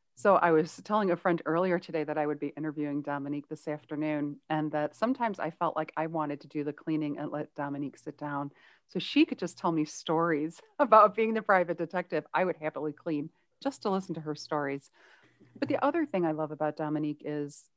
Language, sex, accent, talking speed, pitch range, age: English, female, American, 215 wpm, 150-180 Hz, 40-59